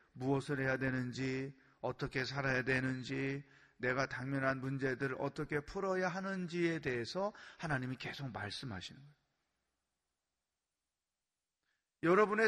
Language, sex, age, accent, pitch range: Korean, male, 30-49, native, 135-185 Hz